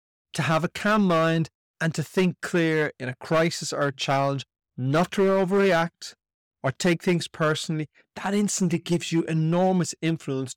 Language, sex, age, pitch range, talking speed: English, male, 30-49, 135-165 Hz, 160 wpm